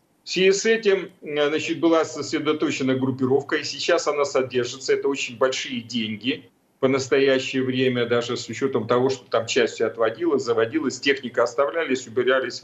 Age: 40-59